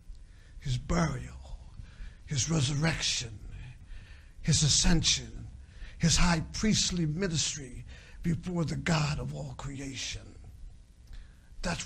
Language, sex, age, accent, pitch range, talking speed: English, male, 60-79, American, 140-225 Hz, 85 wpm